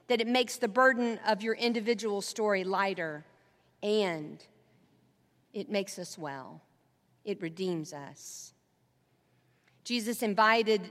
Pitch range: 185-240 Hz